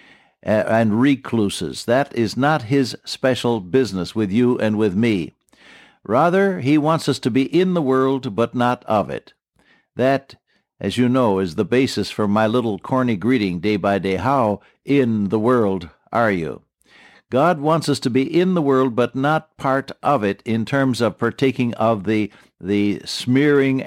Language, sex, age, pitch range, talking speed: English, male, 60-79, 115-145 Hz, 170 wpm